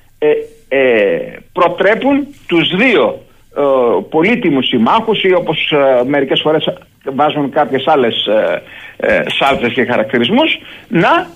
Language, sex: Greek, male